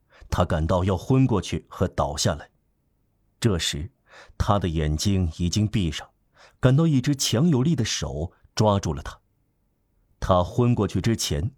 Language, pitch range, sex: Chinese, 90-120 Hz, male